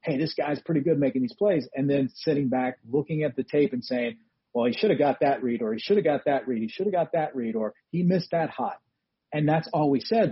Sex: male